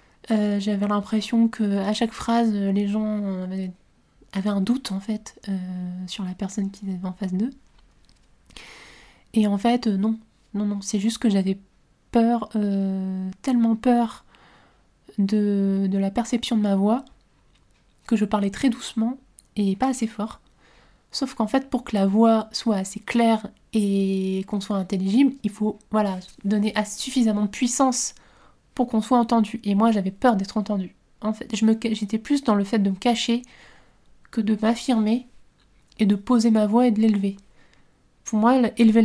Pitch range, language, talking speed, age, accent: 200-235 Hz, French, 165 wpm, 20-39, French